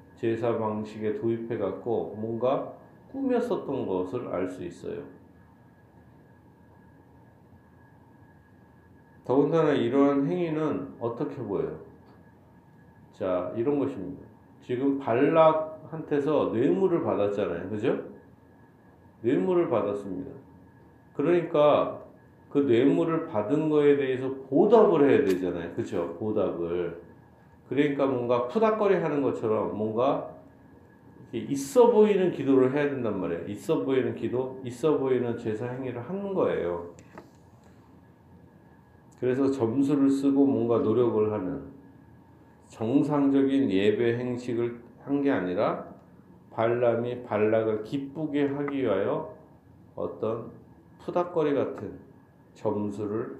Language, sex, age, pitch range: Korean, male, 40-59, 110-150 Hz